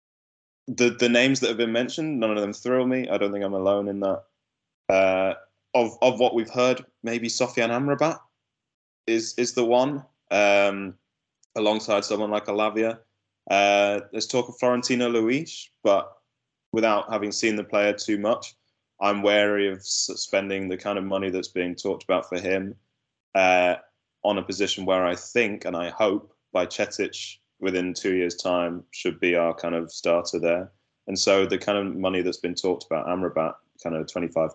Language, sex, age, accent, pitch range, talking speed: English, male, 10-29, British, 90-110 Hz, 175 wpm